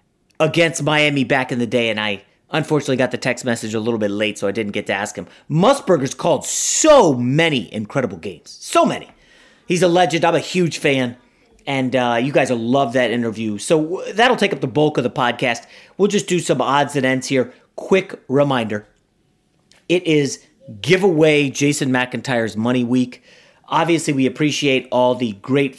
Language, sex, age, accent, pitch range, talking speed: English, male, 30-49, American, 125-170 Hz, 185 wpm